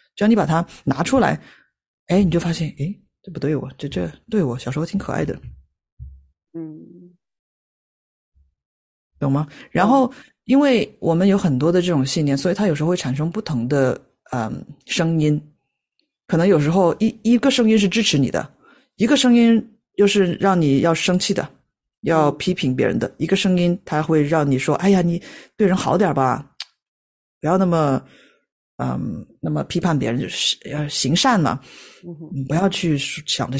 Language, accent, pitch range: Chinese, native, 140-200 Hz